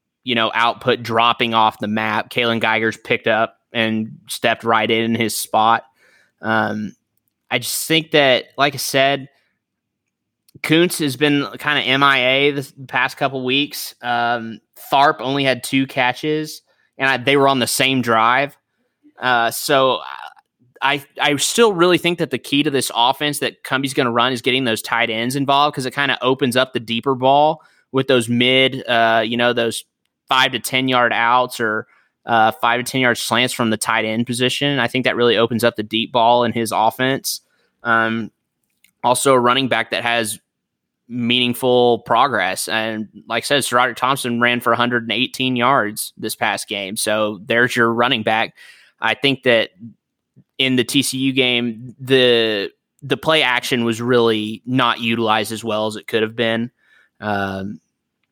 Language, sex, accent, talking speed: English, male, American, 175 wpm